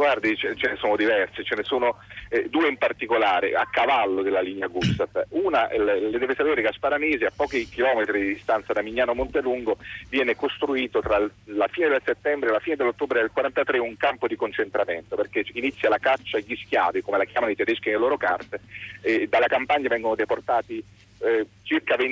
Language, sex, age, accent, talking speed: Italian, male, 40-59, native, 180 wpm